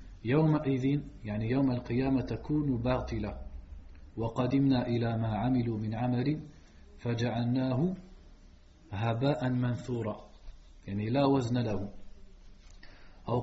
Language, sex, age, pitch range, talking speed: French, male, 40-59, 110-135 Hz, 90 wpm